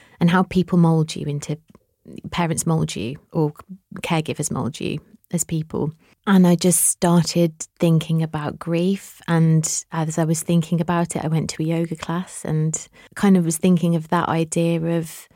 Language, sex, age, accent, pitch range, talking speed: English, female, 30-49, British, 155-170 Hz, 170 wpm